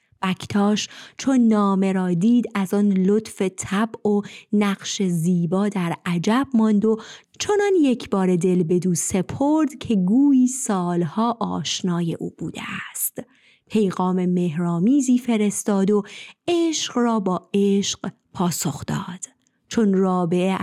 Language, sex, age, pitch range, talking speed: Persian, female, 30-49, 180-230 Hz, 115 wpm